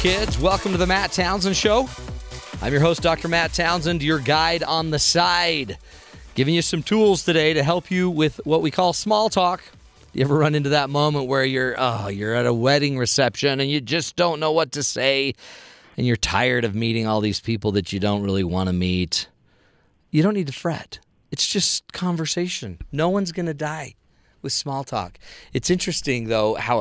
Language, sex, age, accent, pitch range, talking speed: English, male, 40-59, American, 115-165 Hz, 200 wpm